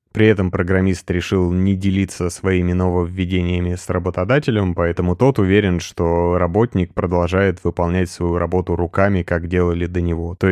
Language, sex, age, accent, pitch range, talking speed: Russian, male, 20-39, native, 85-95 Hz, 145 wpm